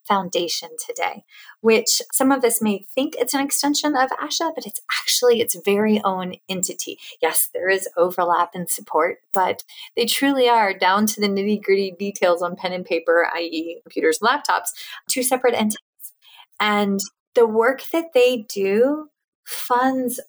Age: 30-49